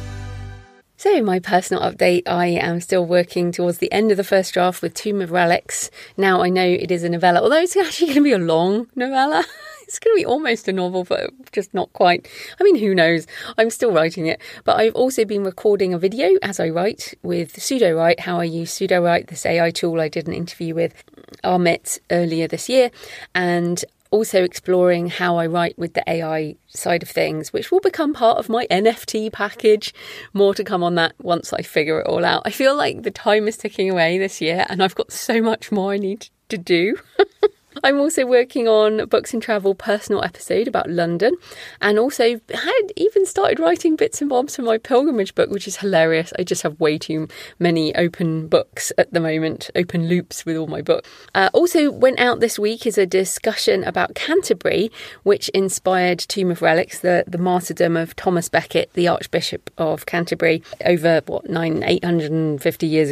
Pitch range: 170-235 Hz